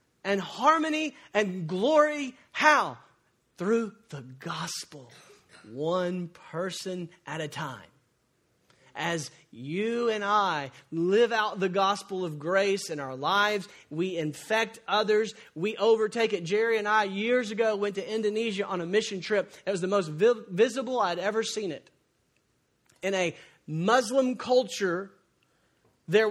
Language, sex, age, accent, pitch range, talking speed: English, male, 40-59, American, 195-280 Hz, 130 wpm